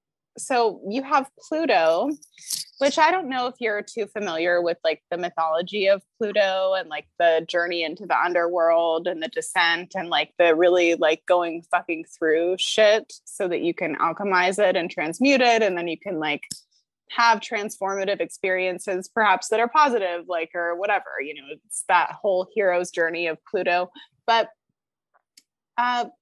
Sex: female